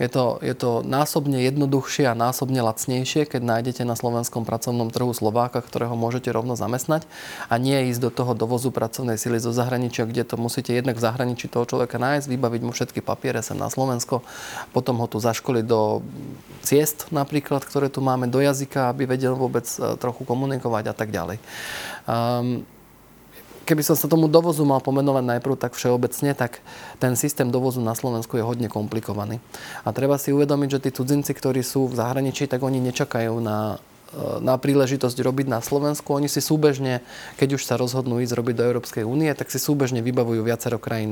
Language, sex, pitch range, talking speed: Slovak, male, 115-140 Hz, 180 wpm